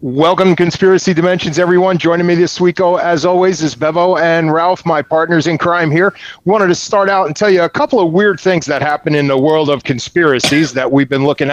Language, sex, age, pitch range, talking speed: English, male, 30-49, 150-185 Hz, 225 wpm